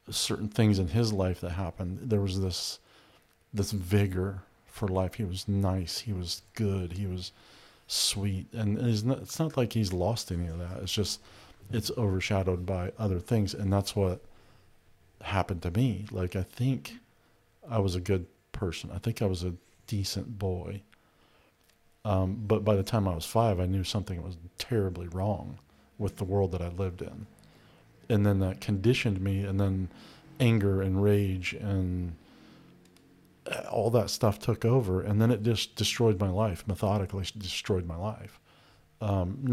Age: 40-59